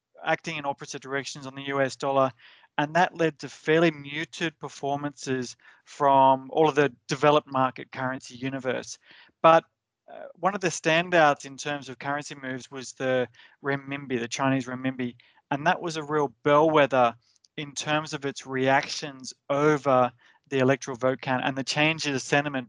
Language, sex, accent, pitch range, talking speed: English, male, Australian, 130-150 Hz, 165 wpm